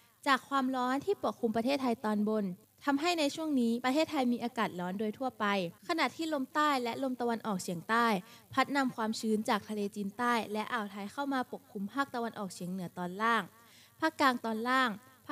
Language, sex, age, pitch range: Thai, female, 20-39, 205-270 Hz